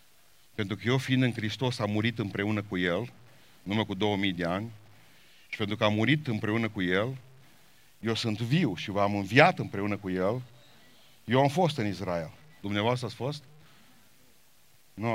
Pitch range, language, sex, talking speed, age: 105-135 Hz, Romanian, male, 165 wpm, 50-69